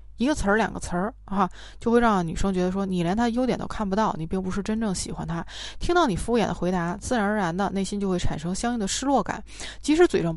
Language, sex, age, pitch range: Chinese, female, 20-39, 175-235 Hz